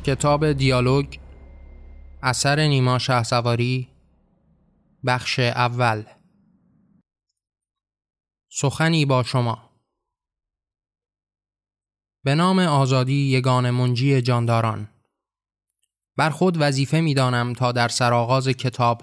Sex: male